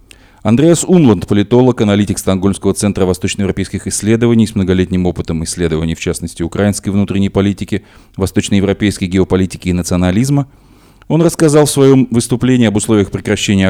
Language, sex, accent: Russian, male, native